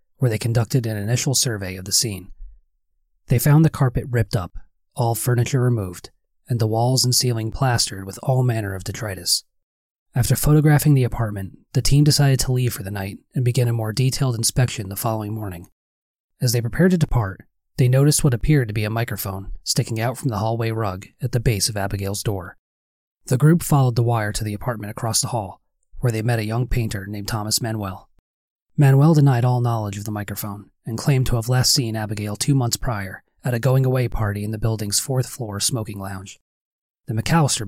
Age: 30-49